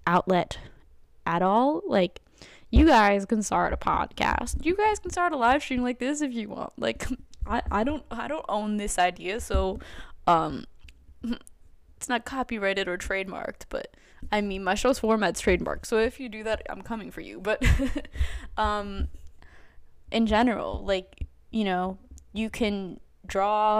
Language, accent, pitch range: English, American, 175-245 Hz